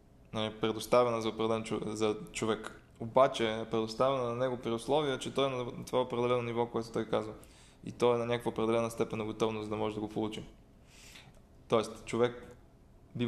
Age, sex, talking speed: 20-39, male, 185 wpm